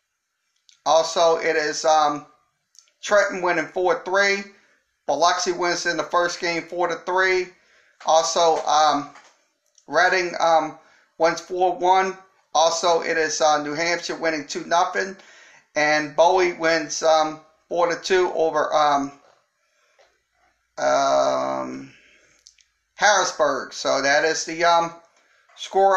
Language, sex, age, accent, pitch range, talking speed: English, male, 40-59, American, 155-185 Hz, 100 wpm